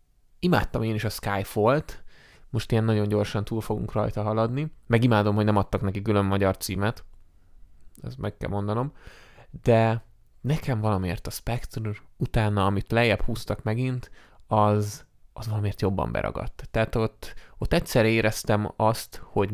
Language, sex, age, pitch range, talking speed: Hungarian, male, 20-39, 105-120 Hz, 145 wpm